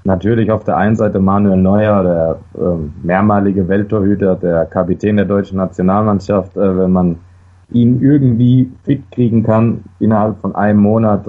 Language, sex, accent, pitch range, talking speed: German, male, German, 90-100 Hz, 150 wpm